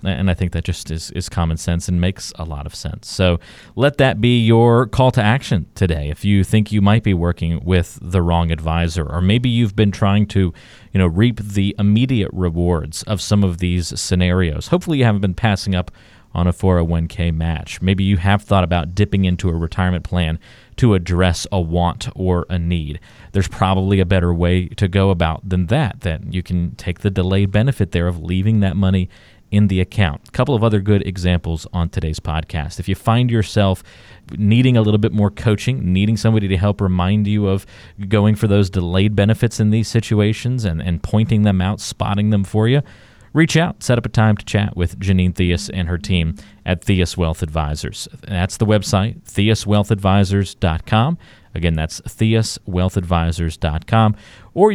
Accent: American